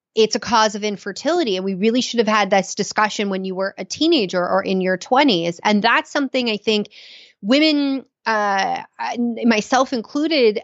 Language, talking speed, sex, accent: English, 175 wpm, female, American